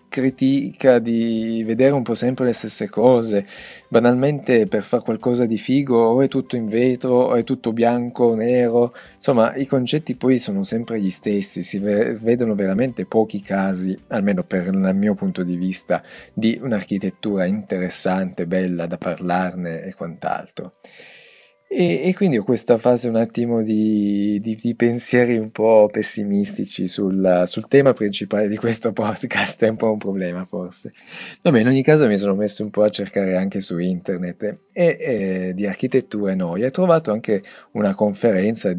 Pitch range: 95-115 Hz